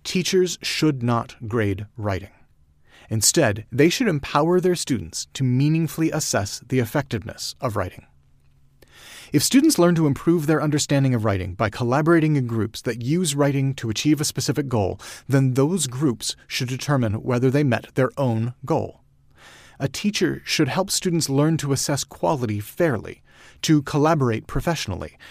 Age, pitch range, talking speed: 30-49, 115-155 Hz, 150 wpm